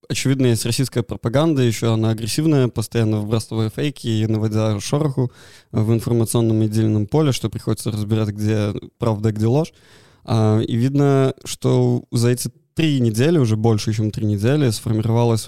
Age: 20-39